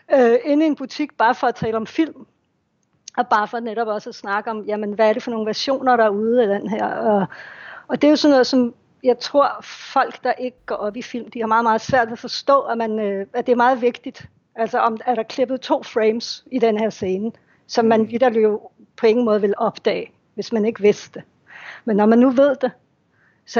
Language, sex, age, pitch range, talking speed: Danish, female, 60-79, 220-255 Hz, 245 wpm